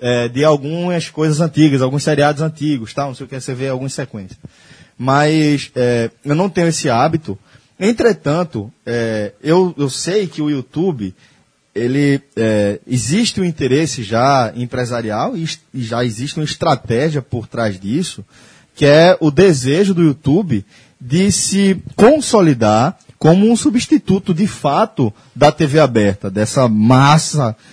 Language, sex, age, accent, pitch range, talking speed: Portuguese, male, 20-39, Brazilian, 125-160 Hz, 130 wpm